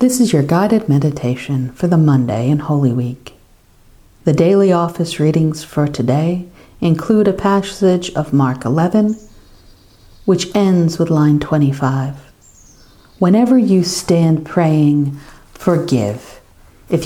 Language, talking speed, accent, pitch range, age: English, 120 wpm, American, 125-175 Hz, 50-69